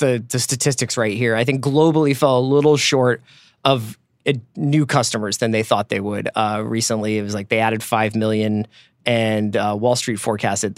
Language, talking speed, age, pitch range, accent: English, 195 wpm, 20-39, 115-155 Hz, American